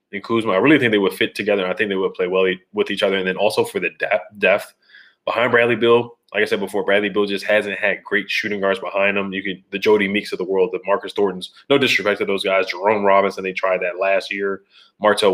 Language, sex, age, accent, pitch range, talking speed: English, male, 20-39, American, 95-115 Hz, 265 wpm